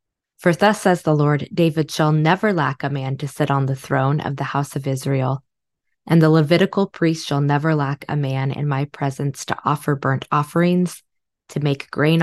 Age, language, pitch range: 20-39, English, 135-165 Hz